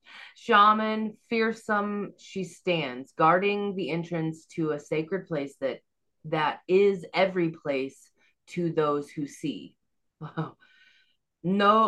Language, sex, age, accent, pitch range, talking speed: English, female, 30-49, American, 160-205 Hz, 105 wpm